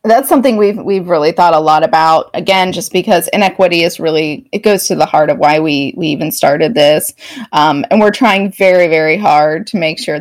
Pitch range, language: 155-210 Hz, English